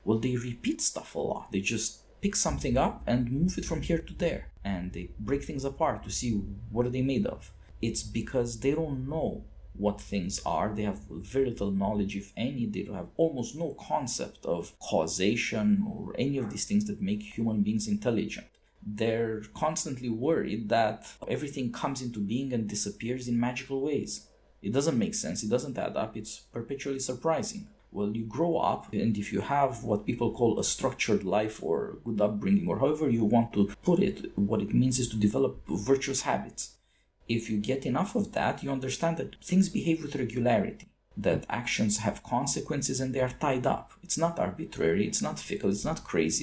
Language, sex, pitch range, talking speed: English, male, 105-155 Hz, 195 wpm